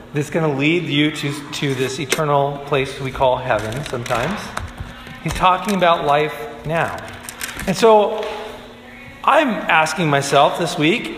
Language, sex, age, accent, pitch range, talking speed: English, male, 40-59, American, 145-185 Hz, 140 wpm